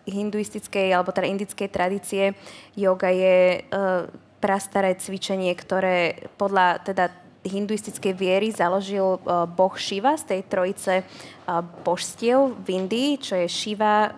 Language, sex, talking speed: Slovak, female, 125 wpm